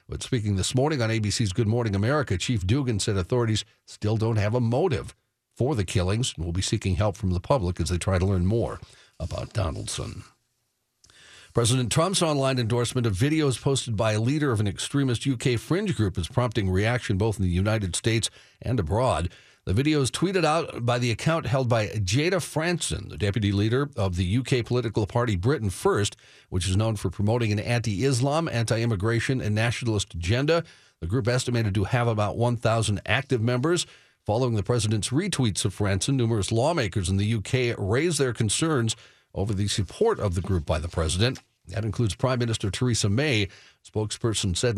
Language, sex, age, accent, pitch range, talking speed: English, male, 50-69, American, 100-125 Hz, 185 wpm